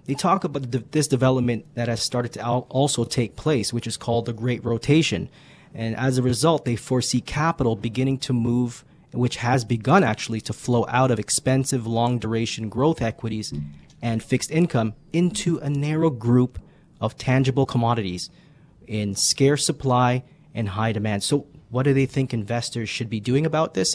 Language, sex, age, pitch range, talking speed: English, male, 30-49, 115-145 Hz, 170 wpm